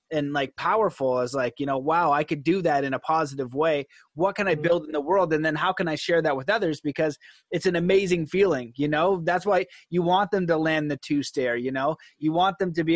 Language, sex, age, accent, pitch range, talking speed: English, male, 20-39, American, 150-180 Hz, 260 wpm